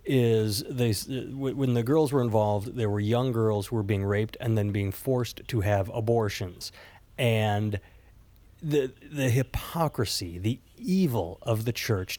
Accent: American